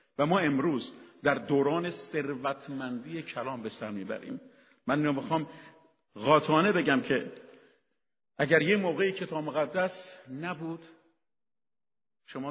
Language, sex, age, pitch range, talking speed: Persian, male, 50-69, 125-155 Hz, 100 wpm